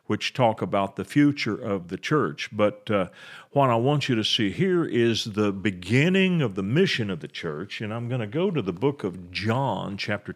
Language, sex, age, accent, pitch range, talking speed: English, male, 50-69, American, 100-140 Hz, 215 wpm